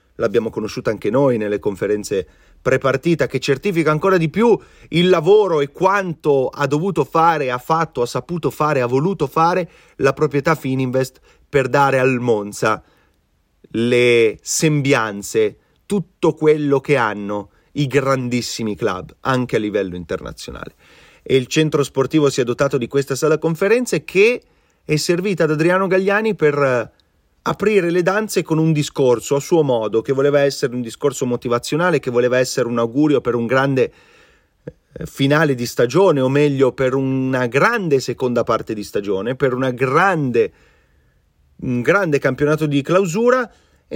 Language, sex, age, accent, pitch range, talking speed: Italian, male, 30-49, native, 125-175 Hz, 150 wpm